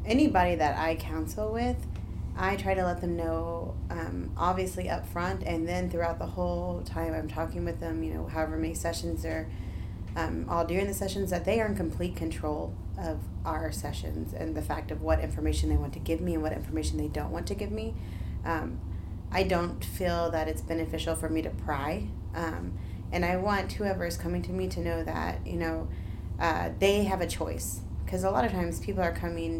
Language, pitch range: English, 80-95 Hz